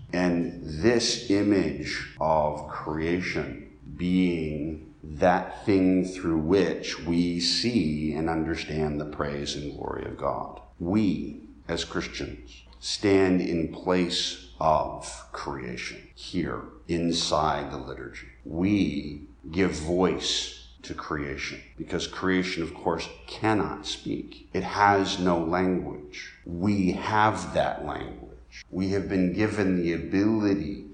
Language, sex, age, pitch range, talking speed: English, male, 50-69, 80-100 Hz, 110 wpm